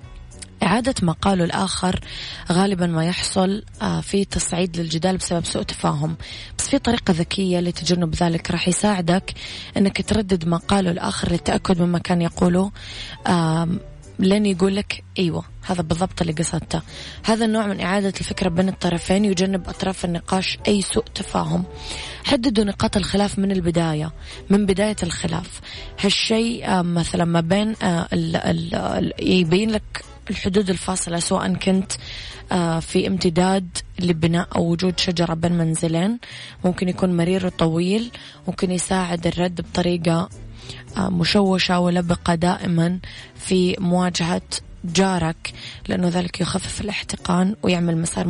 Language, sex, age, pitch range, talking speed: Arabic, female, 20-39, 170-190 Hz, 120 wpm